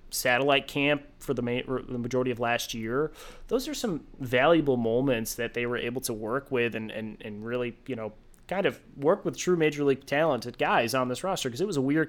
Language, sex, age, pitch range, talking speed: English, male, 30-49, 115-140 Hz, 215 wpm